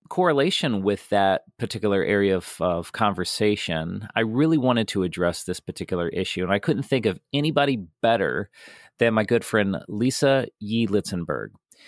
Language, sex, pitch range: English, male, 100-150 Hz